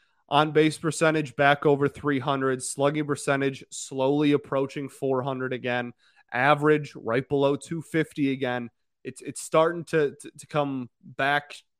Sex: male